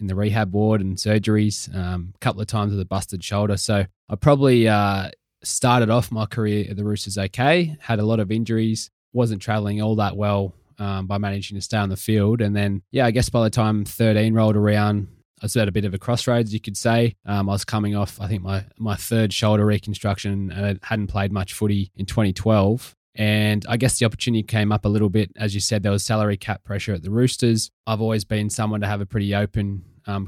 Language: English